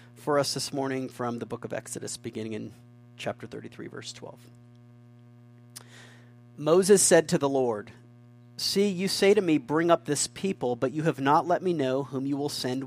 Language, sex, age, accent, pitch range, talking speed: English, male, 40-59, American, 120-150 Hz, 185 wpm